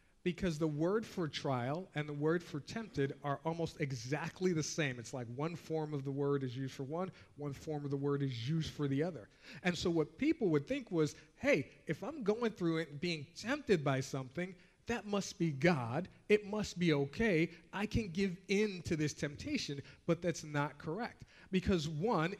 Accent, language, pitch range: American, English, 145-190 Hz